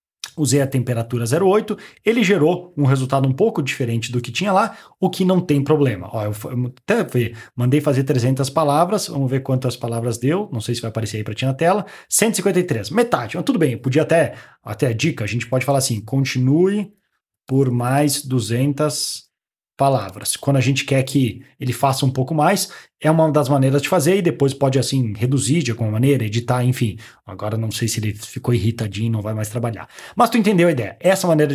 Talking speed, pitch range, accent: 205 wpm, 125-165 Hz, Brazilian